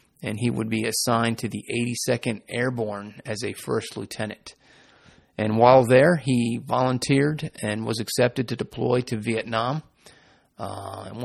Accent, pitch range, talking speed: American, 110-130 Hz, 140 wpm